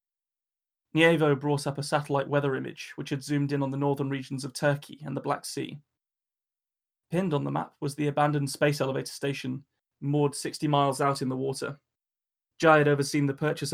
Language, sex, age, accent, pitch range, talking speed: English, male, 20-39, British, 135-150 Hz, 190 wpm